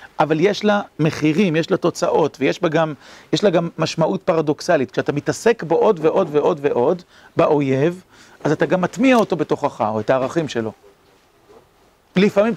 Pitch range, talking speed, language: 135-195 Hz, 155 wpm, Hebrew